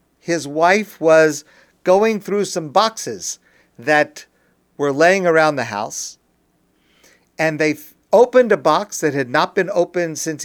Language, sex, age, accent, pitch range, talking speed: English, male, 50-69, American, 150-195 Hz, 140 wpm